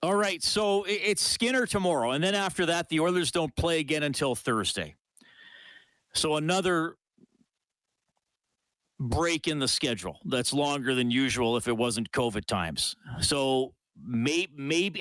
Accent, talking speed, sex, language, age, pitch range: American, 135 wpm, male, English, 40-59, 120-160 Hz